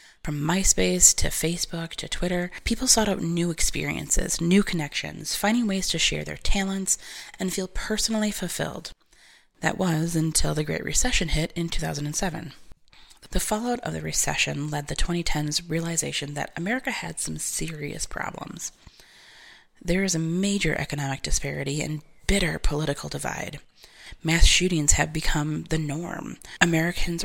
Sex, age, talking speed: female, 20-39, 140 wpm